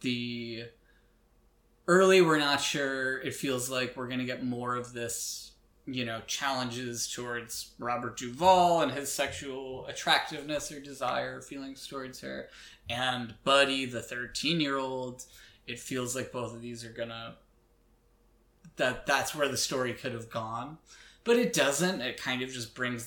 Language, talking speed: English, 155 wpm